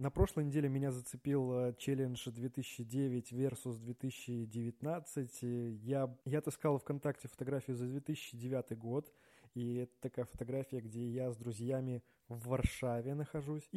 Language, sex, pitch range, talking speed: Russian, male, 125-145 Hz, 125 wpm